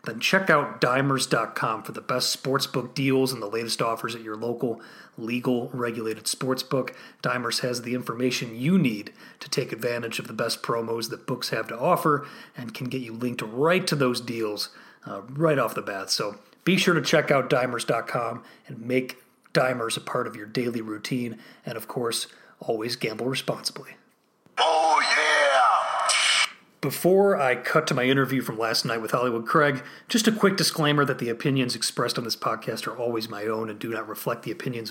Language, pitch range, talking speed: English, 120-150 Hz, 180 wpm